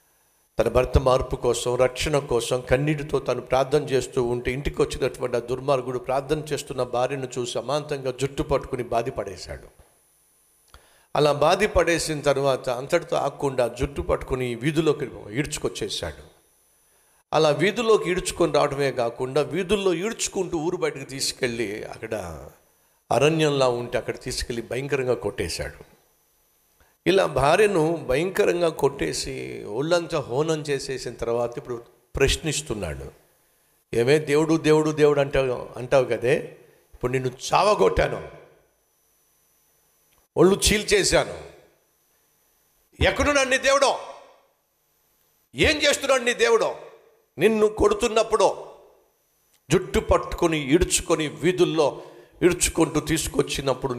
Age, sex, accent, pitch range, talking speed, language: 50-69, male, native, 130-180 Hz, 95 wpm, Telugu